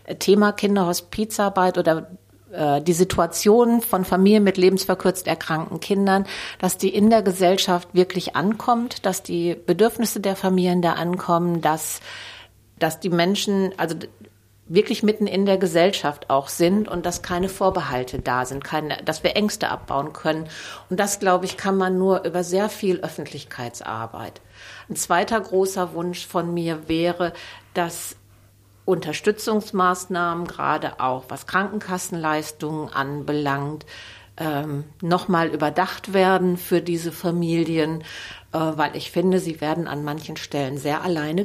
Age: 50-69